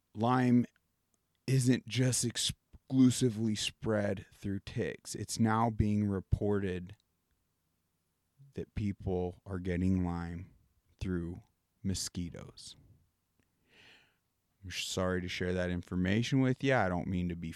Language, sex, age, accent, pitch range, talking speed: English, male, 30-49, American, 90-110 Hz, 105 wpm